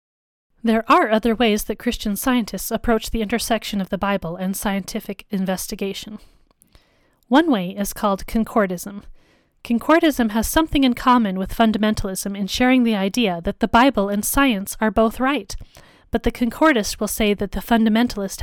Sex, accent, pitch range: female, American, 210-255 Hz